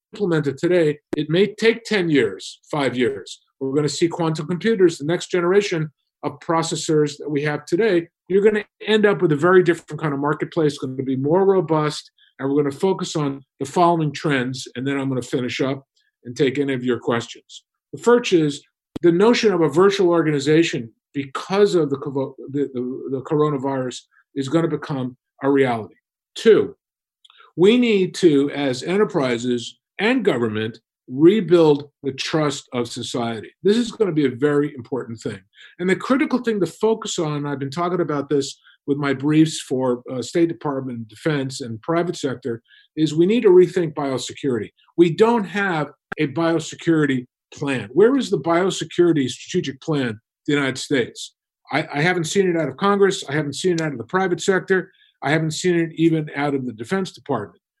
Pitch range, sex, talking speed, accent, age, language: 140-180 Hz, male, 185 wpm, American, 50-69, English